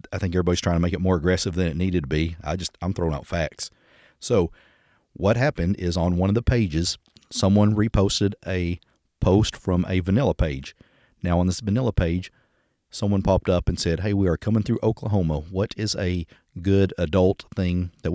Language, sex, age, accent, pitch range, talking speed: English, male, 40-59, American, 85-100 Hz, 200 wpm